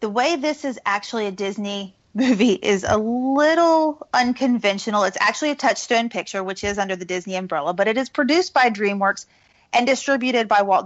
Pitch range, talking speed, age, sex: 190-230 Hz, 180 wpm, 30-49, female